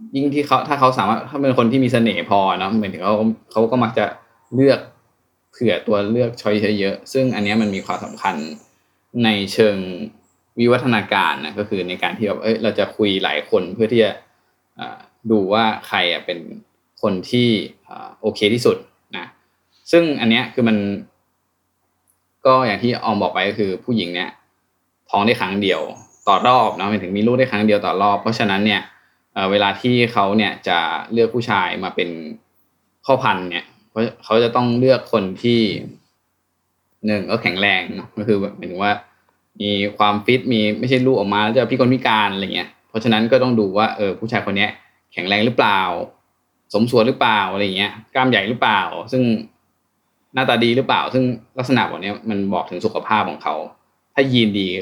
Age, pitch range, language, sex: 20-39, 100-125 Hz, Thai, male